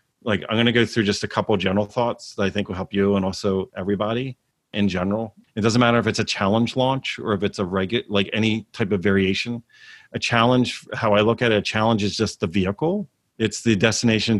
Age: 40-59